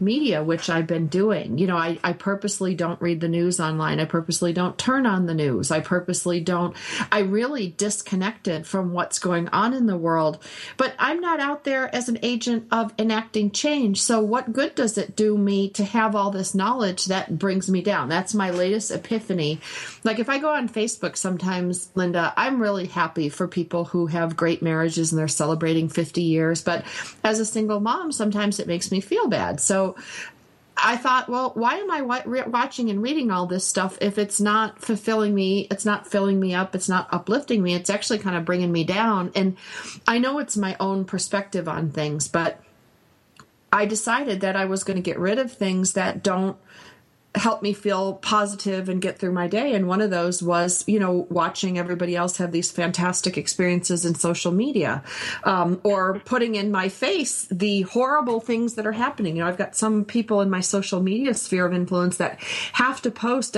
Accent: American